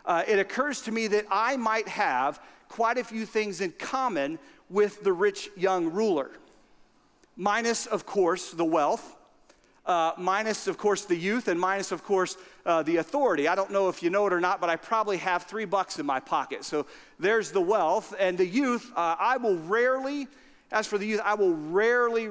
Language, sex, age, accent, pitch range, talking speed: English, male, 40-59, American, 175-225 Hz, 200 wpm